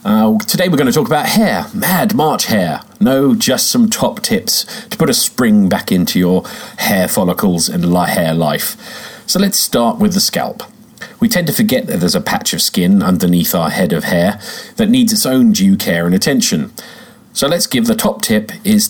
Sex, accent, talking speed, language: male, British, 205 wpm, English